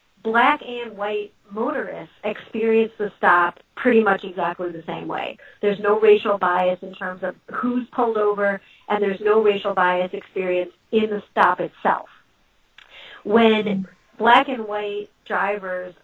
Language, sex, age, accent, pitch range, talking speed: English, female, 40-59, American, 185-220 Hz, 140 wpm